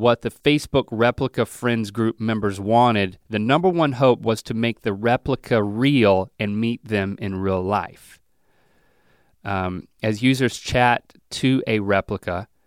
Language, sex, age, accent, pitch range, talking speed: English, male, 30-49, American, 105-125 Hz, 145 wpm